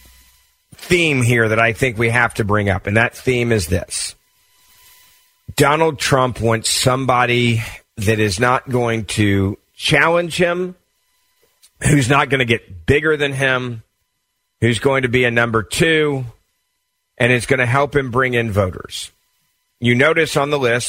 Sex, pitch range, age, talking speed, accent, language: male, 110-135 Hz, 40-59, 160 wpm, American, English